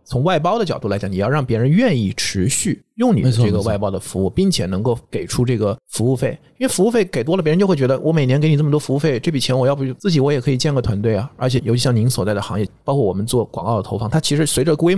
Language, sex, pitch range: Chinese, male, 105-140 Hz